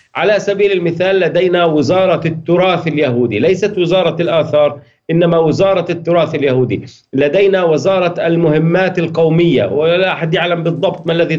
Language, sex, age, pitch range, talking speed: Arabic, male, 40-59, 150-180 Hz, 125 wpm